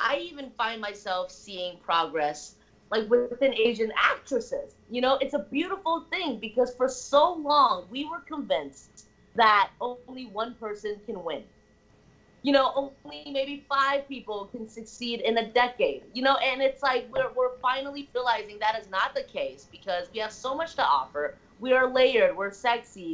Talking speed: 170 wpm